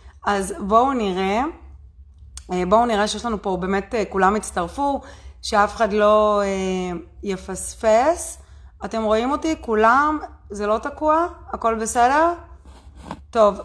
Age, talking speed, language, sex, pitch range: 30-49, 110 wpm, Hebrew, female, 170-215 Hz